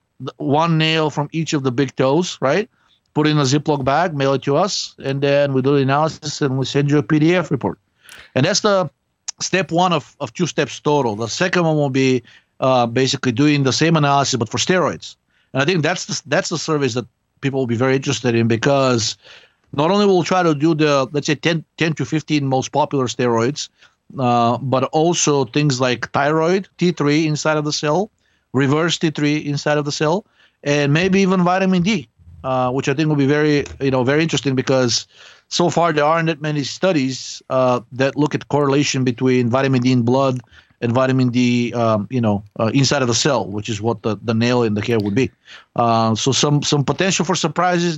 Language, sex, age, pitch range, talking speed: English, male, 50-69, 130-155 Hz, 210 wpm